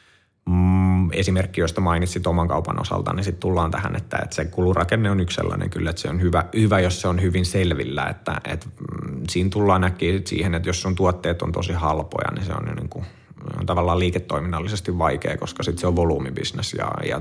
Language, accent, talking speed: Finnish, native, 195 wpm